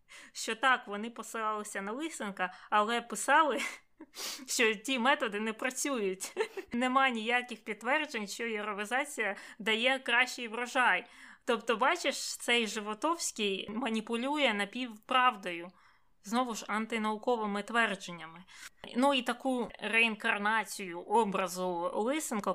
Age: 20-39